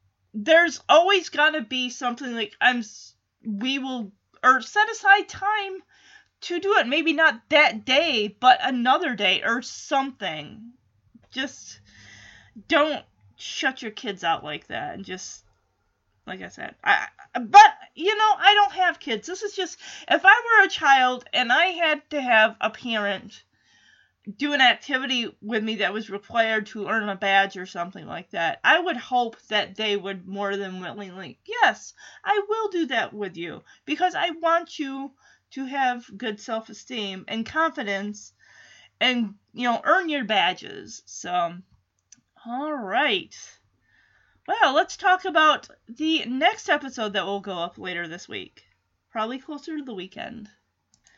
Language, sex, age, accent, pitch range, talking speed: English, female, 30-49, American, 210-325 Hz, 155 wpm